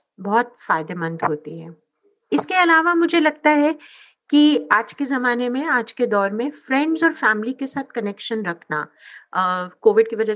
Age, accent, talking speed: 50-69, native, 170 wpm